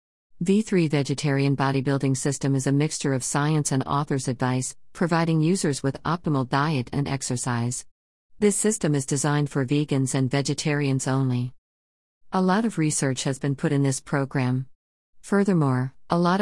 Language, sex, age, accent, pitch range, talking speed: English, female, 50-69, American, 130-165 Hz, 150 wpm